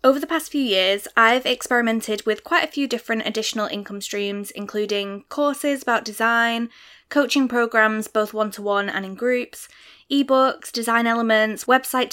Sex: female